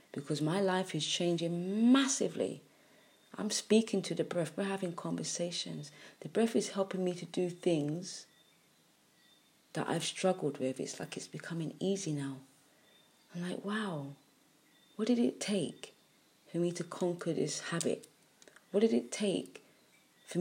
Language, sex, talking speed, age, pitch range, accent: English, female, 145 wpm, 30-49, 150-200 Hz, British